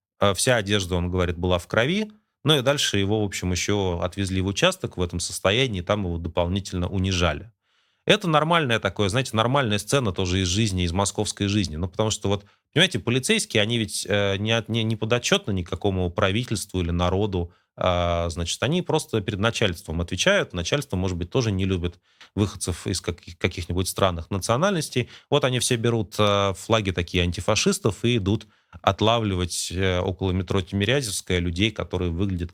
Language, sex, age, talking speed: Russian, male, 30-49, 155 wpm